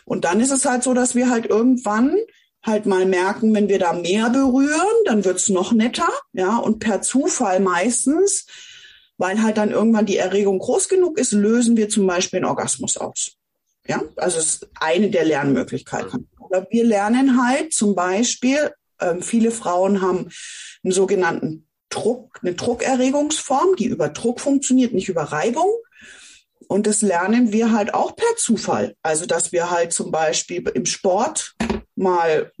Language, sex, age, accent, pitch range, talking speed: German, female, 30-49, German, 195-260 Hz, 165 wpm